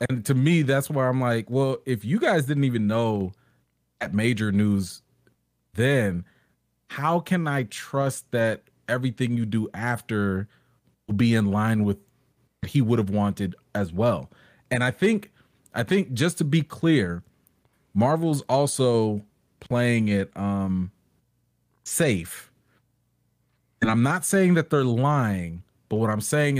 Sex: male